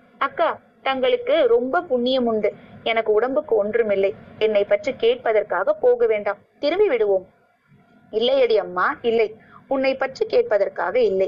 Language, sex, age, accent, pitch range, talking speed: Tamil, female, 20-39, native, 215-300 Hz, 115 wpm